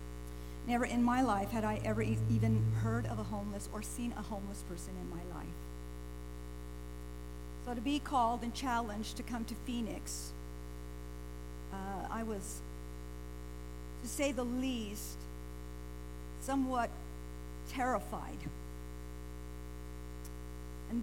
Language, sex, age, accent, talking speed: English, female, 50-69, American, 115 wpm